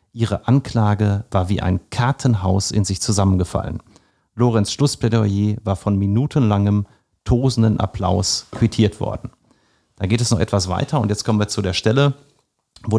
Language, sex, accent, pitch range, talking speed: German, male, German, 100-120 Hz, 150 wpm